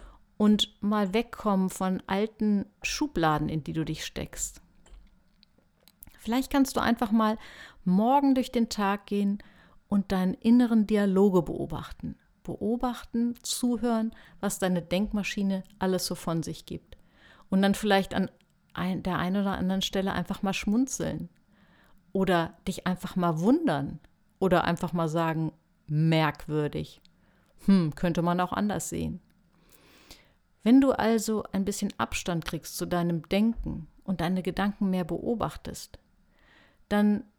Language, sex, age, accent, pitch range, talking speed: German, female, 50-69, German, 175-215 Hz, 130 wpm